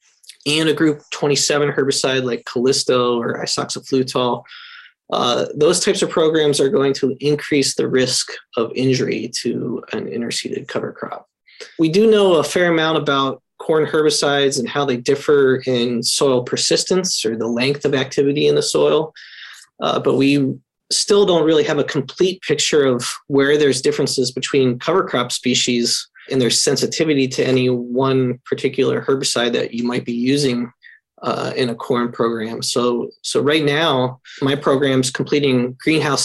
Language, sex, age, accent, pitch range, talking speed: English, male, 20-39, American, 125-150 Hz, 155 wpm